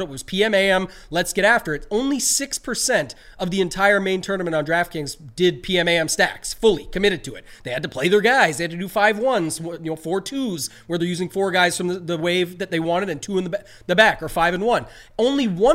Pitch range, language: 175-225 Hz, English